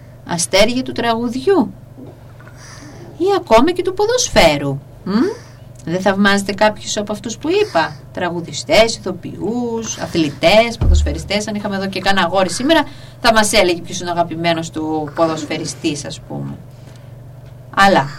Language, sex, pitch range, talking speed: Greek, female, 150-255 Hz, 125 wpm